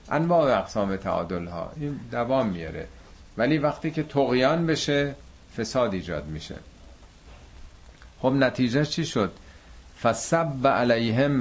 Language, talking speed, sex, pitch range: Persian, 110 wpm, male, 90-120 Hz